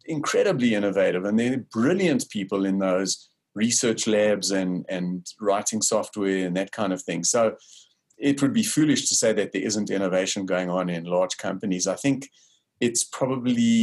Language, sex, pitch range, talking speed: English, male, 95-115 Hz, 170 wpm